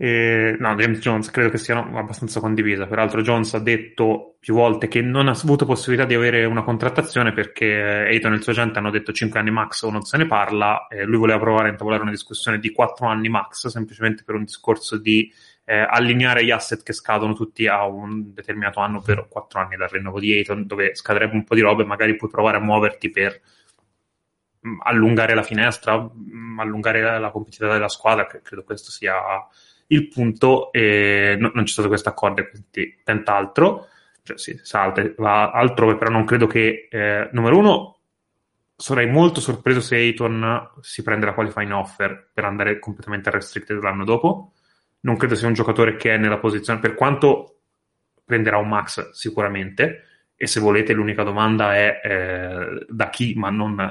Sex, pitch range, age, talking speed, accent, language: male, 105-115 Hz, 20-39, 185 wpm, native, Italian